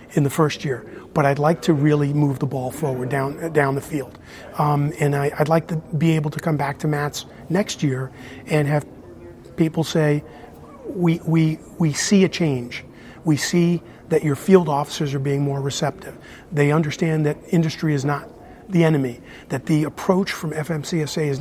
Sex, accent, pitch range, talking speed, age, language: male, American, 140-165 Hz, 185 wpm, 40-59, English